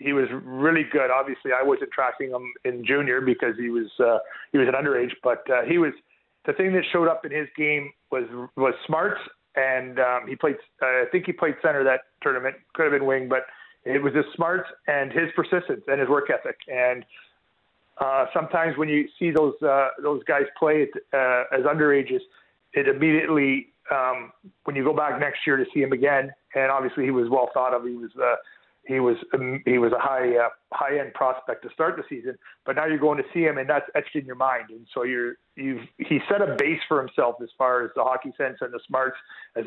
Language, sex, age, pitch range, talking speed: English, male, 40-59, 130-155 Hz, 220 wpm